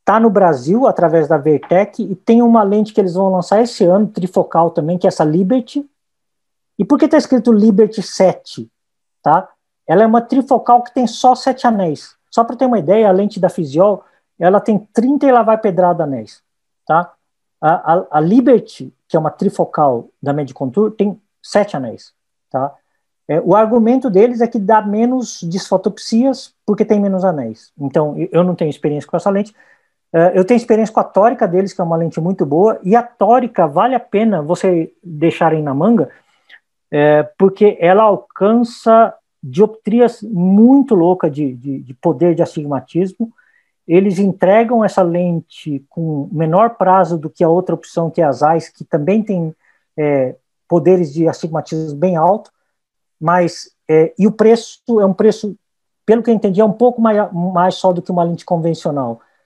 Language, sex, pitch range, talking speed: Portuguese, male, 165-225 Hz, 175 wpm